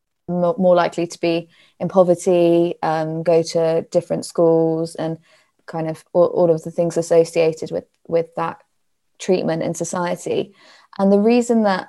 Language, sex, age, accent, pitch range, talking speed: English, female, 20-39, British, 165-180 Hz, 150 wpm